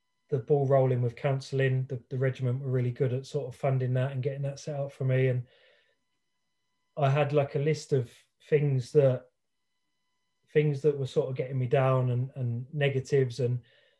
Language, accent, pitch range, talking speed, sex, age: English, British, 125-145 Hz, 190 wpm, male, 20-39